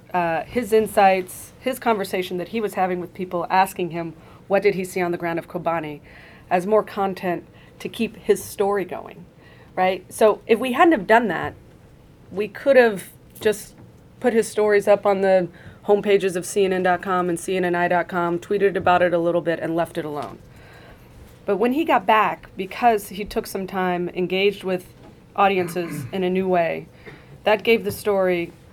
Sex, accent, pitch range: female, American, 175-205 Hz